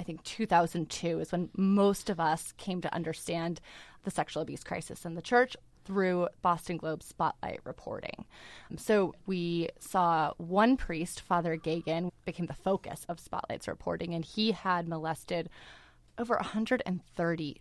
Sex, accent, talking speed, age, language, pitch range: female, American, 145 wpm, 20-39, English, 165-200 Hz